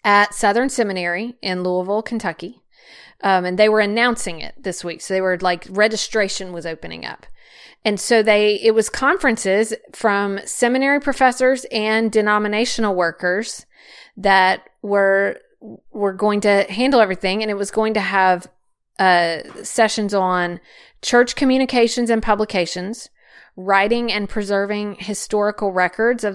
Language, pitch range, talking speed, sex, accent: English, 185-225 Hz, 135 wpm, female, American